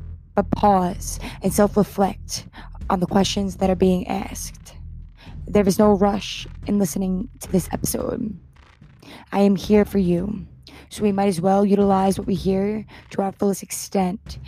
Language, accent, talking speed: English, American, 160 wpm